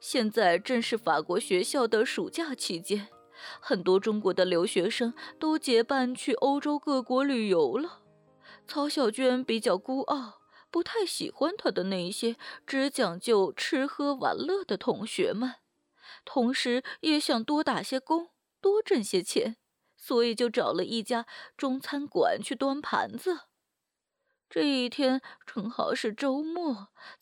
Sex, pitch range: female, 235-325 Hz